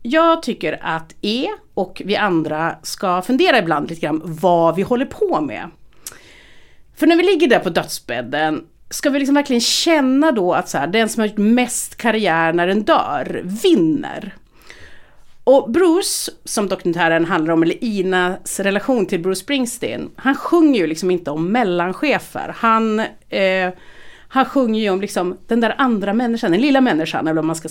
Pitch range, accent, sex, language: 170-265 Hz, native, female, Swedish